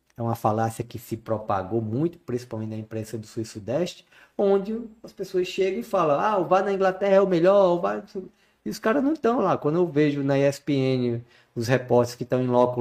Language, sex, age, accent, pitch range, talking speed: Portuguese, male, 20-39, Brazilian, 120-175 Hz, 220 wpm